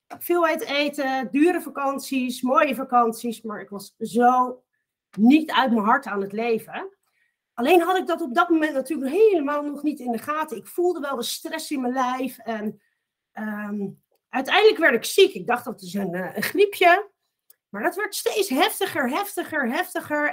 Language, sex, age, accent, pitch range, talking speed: Dutch, female, 40-59, Dutch, 235-305 Hz, 175 wpm